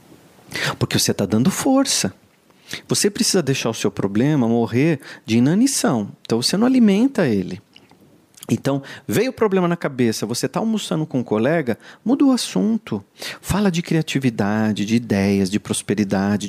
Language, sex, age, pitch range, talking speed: Portuguese, male, 40-59, 110-175 Hz, 150 wpm